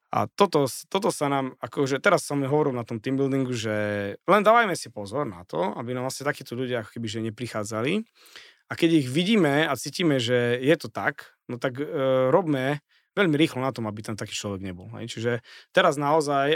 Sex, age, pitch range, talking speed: male, 30-49, 120-150 Hz, 205 wpm